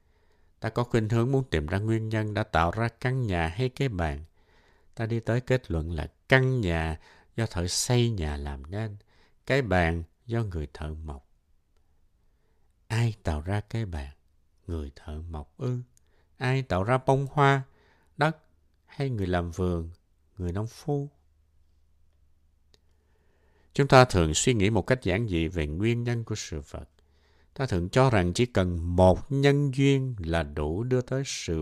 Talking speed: 170 wpm